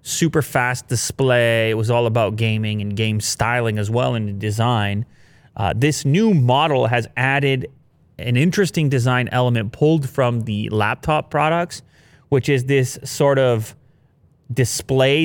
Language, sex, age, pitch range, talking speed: English, male, 30-49, 110-135 Hz, 140 wpm